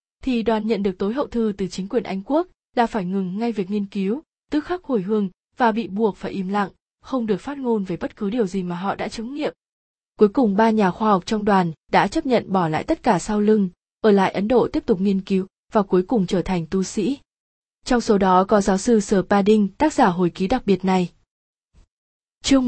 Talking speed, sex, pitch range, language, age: 240 wpm, female, 190-230 Hz, Vietnamese, 20-39